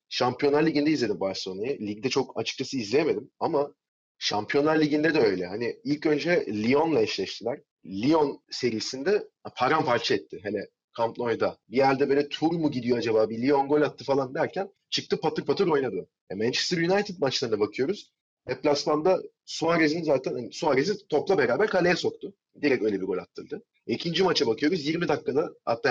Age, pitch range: 30-49, 135-205 Hz